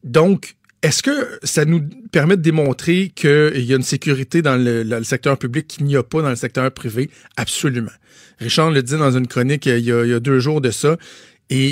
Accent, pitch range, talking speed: Canadian, 130-160 Hz, 230 wpm